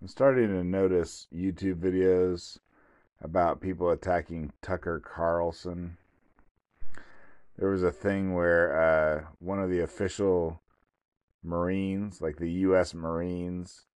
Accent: American